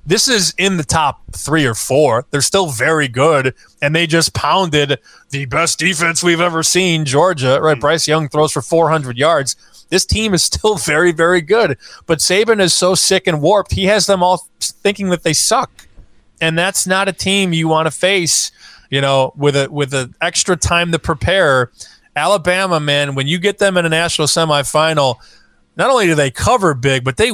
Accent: American